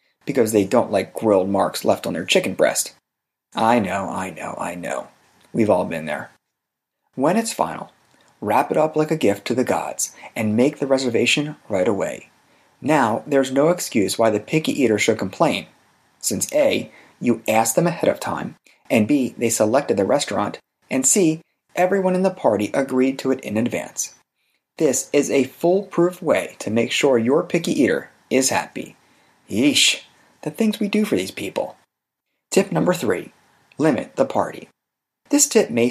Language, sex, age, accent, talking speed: English, male, 30-49, American, 175 wpm